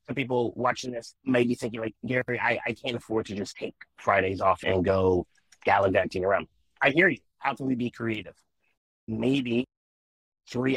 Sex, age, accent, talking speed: male, 30-49, American, 175 wpm